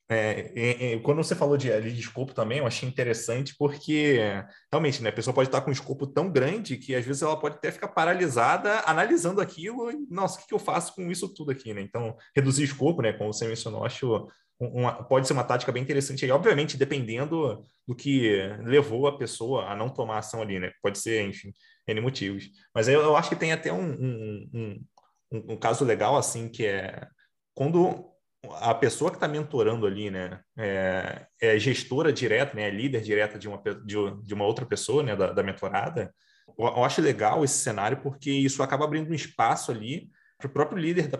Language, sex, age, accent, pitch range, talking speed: Portuguese, male, 20-39, Brazilian, 115-150 Hz, 205 wpm